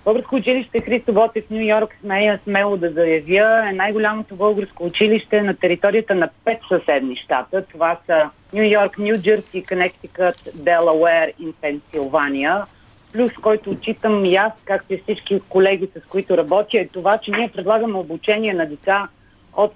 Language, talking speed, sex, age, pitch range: Bulgarian, 150 wpm, female, 40-59, 175-210 Hz